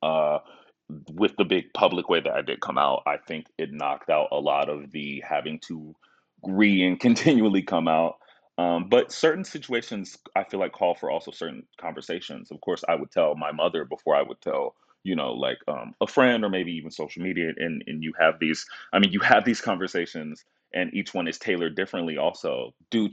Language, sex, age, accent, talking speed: English, male, 30-49, American, 210 wpm